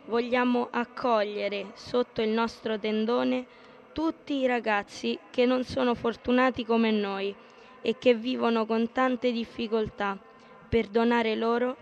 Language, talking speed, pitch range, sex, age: Italian, 120 wpm, 220-245 Hz, female, 20-39